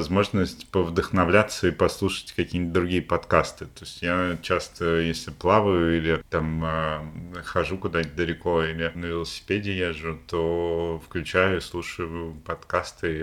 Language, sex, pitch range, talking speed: Russian, male, 80-85 Hz, 120 wpm